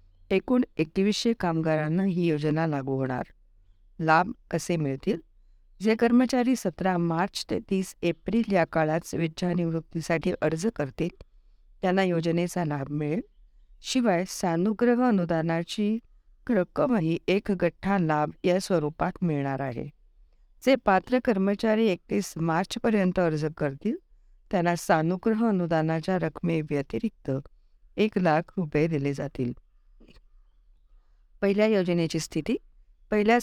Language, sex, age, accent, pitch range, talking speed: Marathi, female, 50-69, native, 150-205 Hz, 100 wpm